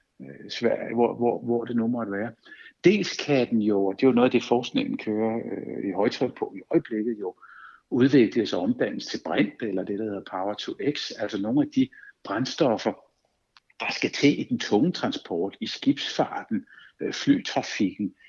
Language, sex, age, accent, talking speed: Danish, male, 60-79, native, 170 wpm